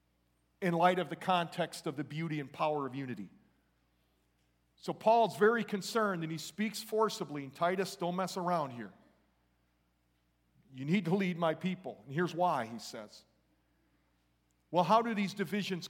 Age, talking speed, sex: 40-59, 160 wpm, male